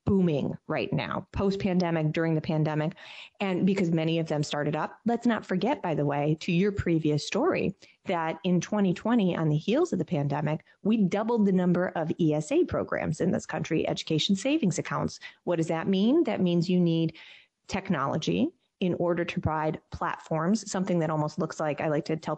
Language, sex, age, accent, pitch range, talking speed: English, female, 30-49, American, 155-205 Hz, 190 wpm